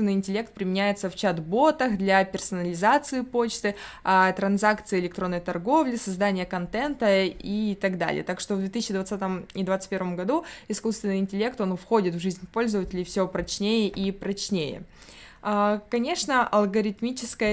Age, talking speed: 20-39, 125 wpm